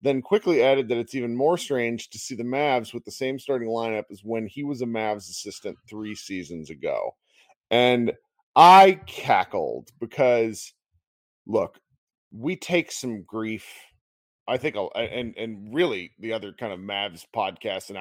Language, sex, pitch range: English, male, 105-135 Hz